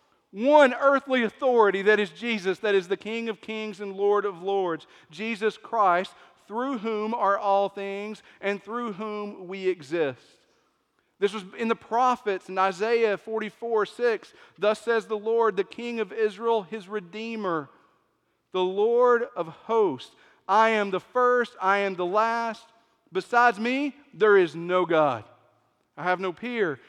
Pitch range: 195-240 Hz